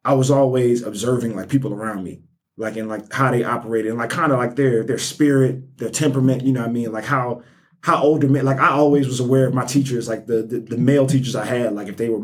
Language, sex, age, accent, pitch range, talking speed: English, male, 20-39, American, 115-140 Hz, 265 wpm